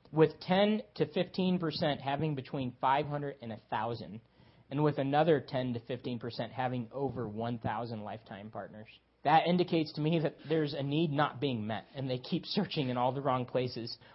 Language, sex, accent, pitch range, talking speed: English, male, American, 125-165 Hz, 170 wpm